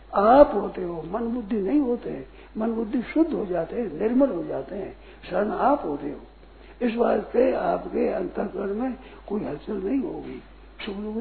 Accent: native